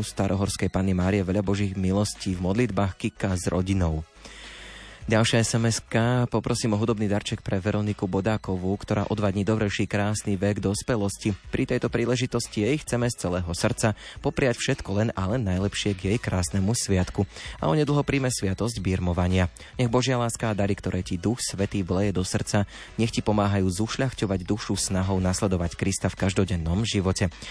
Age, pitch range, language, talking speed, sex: 20-39, 95-115 Hz, Slovak, 155 wpm, male